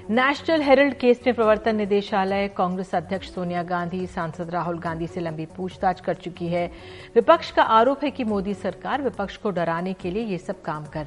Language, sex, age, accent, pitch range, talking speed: Hindi, female, 50-69, native, 185-245 Hz, 190 wpm